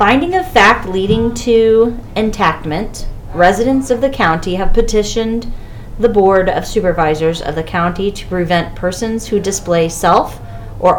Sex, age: female, 30-49